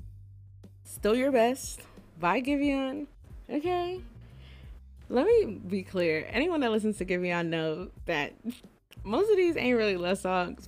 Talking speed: 135 wpm